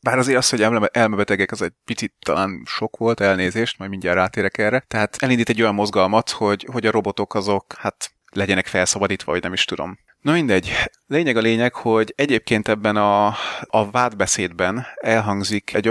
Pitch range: 100-115 Hz